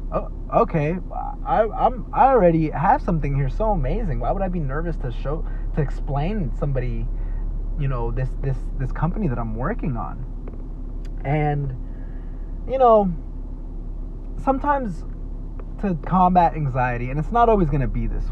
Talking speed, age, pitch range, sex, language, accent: 145 wpm, 20-39, 125-175 Hz, male, English, American